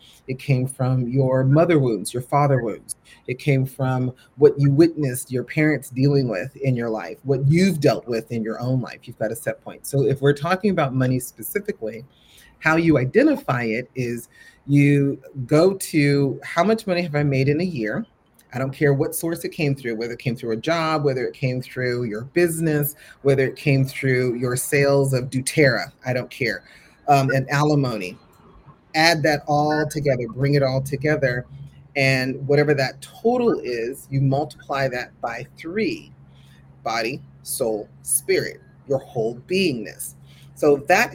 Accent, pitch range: American, 125-150 Hz